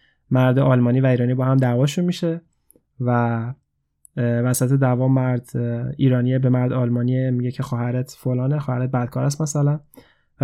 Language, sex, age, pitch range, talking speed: Persian, male, 20-39, 125-140 Hz, 145 wpm